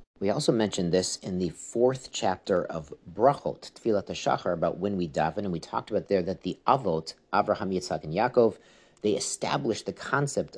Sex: male